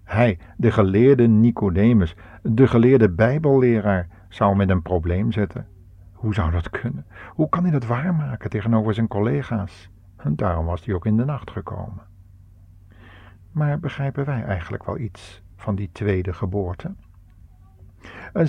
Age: 50-69